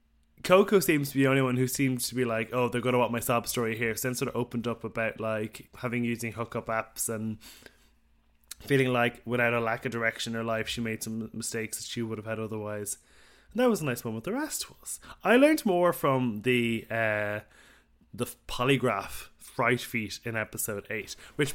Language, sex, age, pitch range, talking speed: English, male, 20-39, 110-135 Hz, 215 wpm